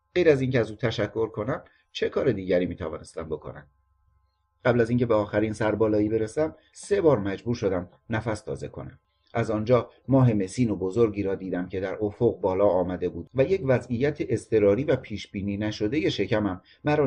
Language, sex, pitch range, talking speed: Persian, male, 95-120 Hz, 180 wpm